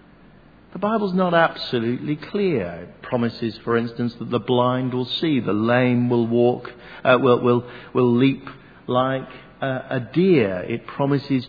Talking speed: 150 wpm